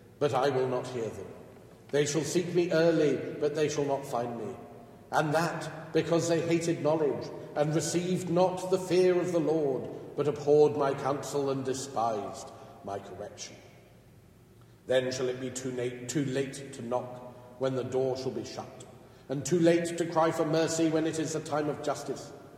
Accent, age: British, 50-69